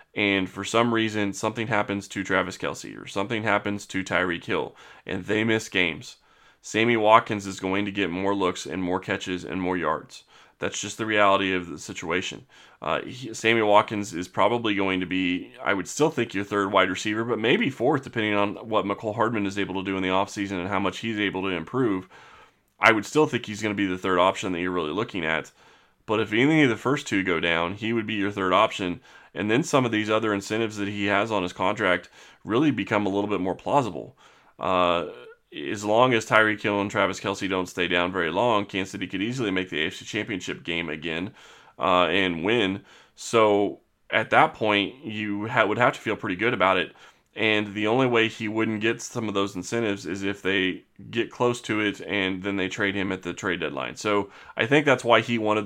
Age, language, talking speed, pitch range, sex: 20-39, English, 220 wpm, 95-110 Hz, male